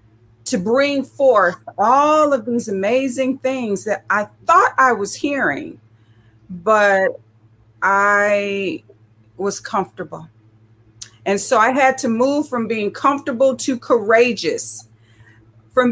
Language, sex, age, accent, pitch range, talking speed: English, female, 40-59, American, 170-275 Hz, 115 wpm